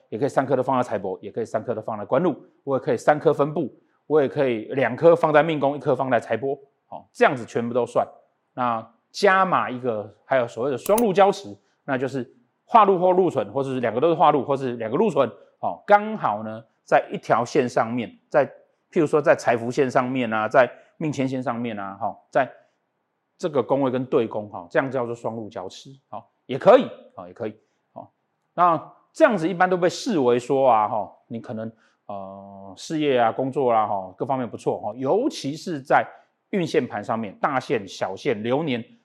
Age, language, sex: 30-49, Chinese, male